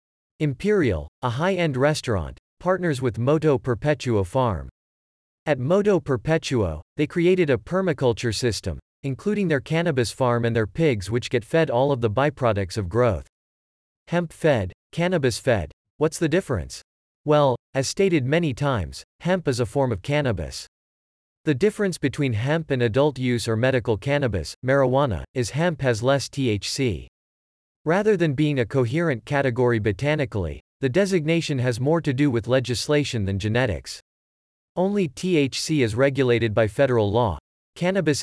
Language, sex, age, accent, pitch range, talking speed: English, male, 40-59, American, 110-150 Hz, 140 wpm